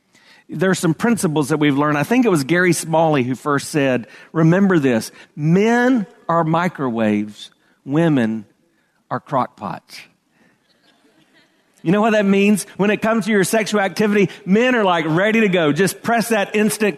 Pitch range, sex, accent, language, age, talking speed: 160-220 Hz, male, American, English, 40-59, 165 wpm